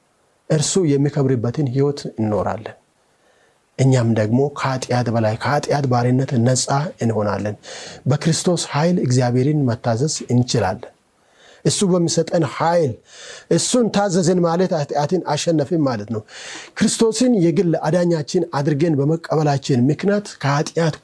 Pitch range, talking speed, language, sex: 125-170 Hz, 95 wpm, Amharic, male